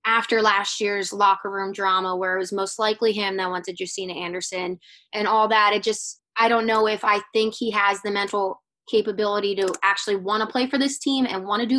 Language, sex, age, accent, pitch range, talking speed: English, female, 20-39, American, 200-240 Hz, 230 wpm